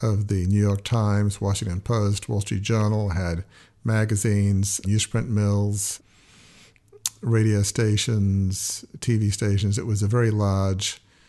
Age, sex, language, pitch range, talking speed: 50-69, male, English, 100-115 Hz, 120 wpm